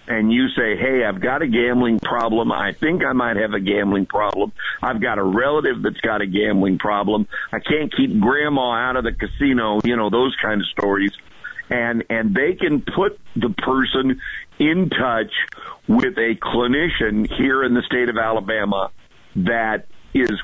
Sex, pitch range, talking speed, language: male, 100-125 Hz, 175 wpm, English